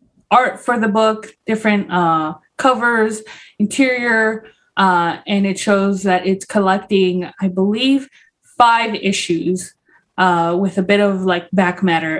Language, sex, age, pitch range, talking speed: English, female, 20-39, 190-235 Hz, 135 wpm